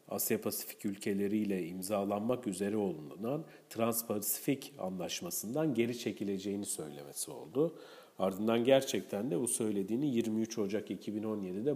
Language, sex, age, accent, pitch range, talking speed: Turkish, male, 40-59, native, 95-115 Hz, 105 wpm